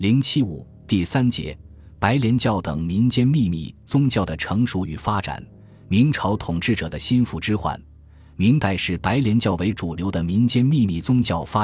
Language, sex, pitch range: Chinese, male, 85-115 Hz